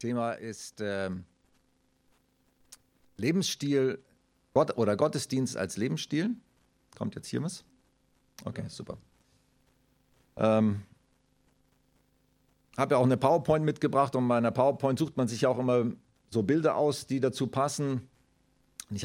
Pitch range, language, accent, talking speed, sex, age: 115-135 Hz, German, German, 125 wpm, male, 50-69